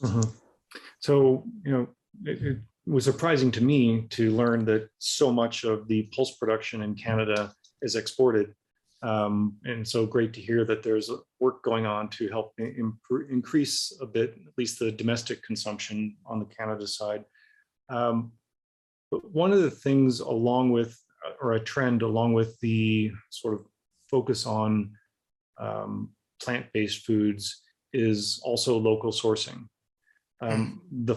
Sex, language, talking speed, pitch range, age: male, English, 145 wpm, 110-135 Hz, 30-49